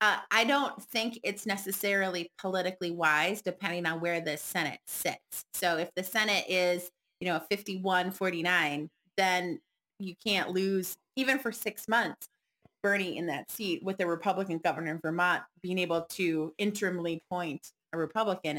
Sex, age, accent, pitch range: female, 30-49, American, 165-195 Hz